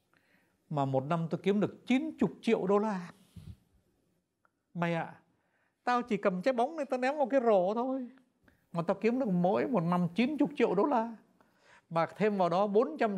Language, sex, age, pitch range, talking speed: Vietnamese, male, 60-79, 130-210 Hz, 185 wpm